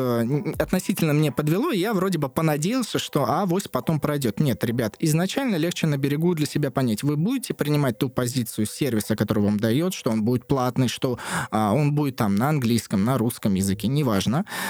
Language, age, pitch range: Russian, 20-39, 115-165 Hz